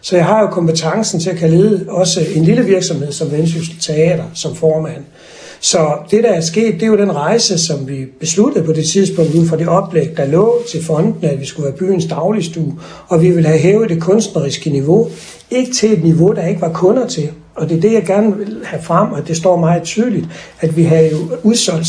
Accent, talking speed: native, 225 wpm